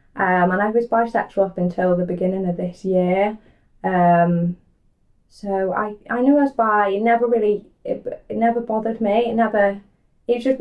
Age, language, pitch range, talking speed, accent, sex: 10-29, English, 175-210 Hz, 185 wpm, British, female